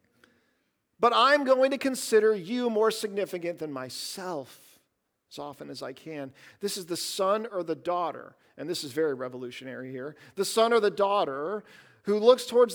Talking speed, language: 170 wpm, English